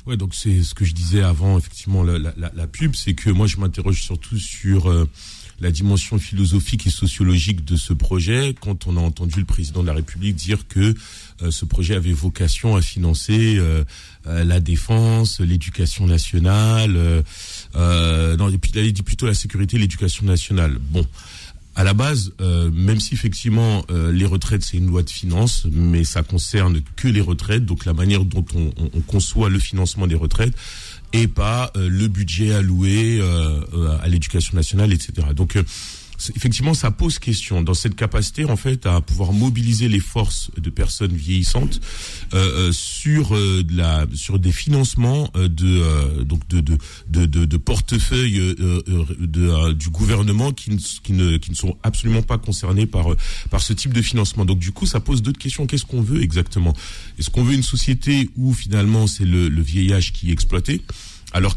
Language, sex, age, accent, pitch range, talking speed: French, male, 40-59, French, 85-105 Hz, 190 wpm